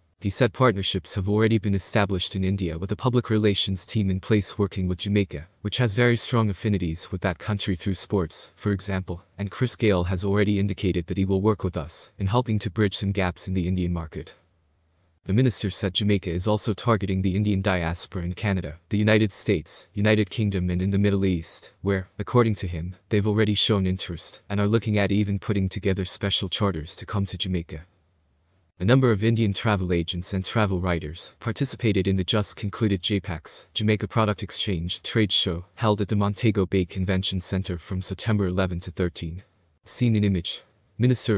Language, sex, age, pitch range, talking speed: English, male, 20-39, 90-105 Hz, 190 wpm